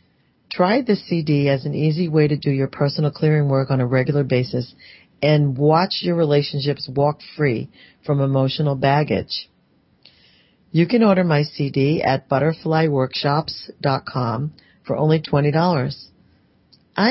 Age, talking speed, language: 40-59, 125 wpm, English